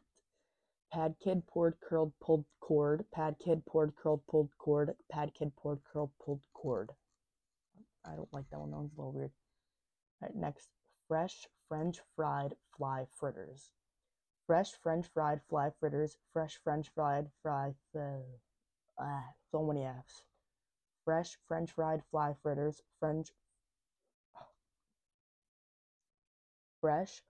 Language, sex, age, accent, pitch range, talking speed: English, female, 20-39, American, 145-160 Hz, 120 wpm